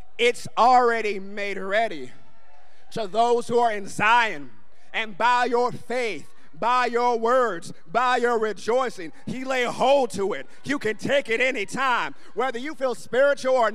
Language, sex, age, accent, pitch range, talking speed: English, male, 30-49, American, 230-285 Hz, 155 wpm